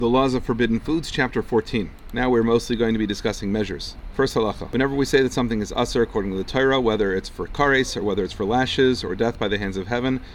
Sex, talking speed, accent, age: male, 255 wpm, American, 40-59